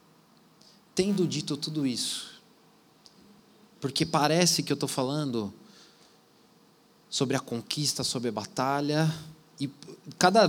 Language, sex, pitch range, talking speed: Portuguese, male, 125-180 Hz, 105 wpm